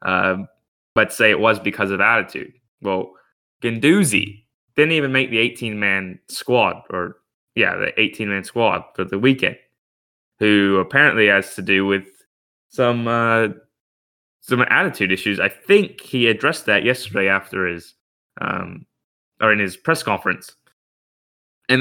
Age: 10-29